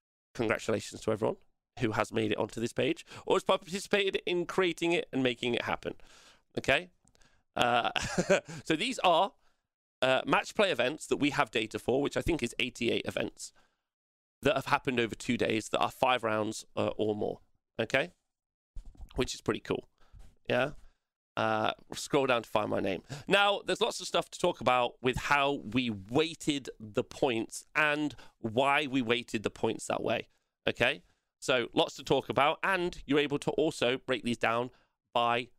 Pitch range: 120-175 Hz